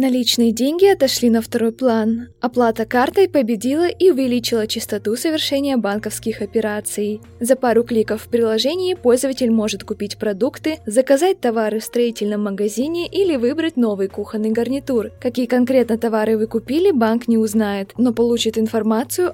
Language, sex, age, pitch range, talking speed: Russian, female, 20-39, 220-265 Hz, 140 wpm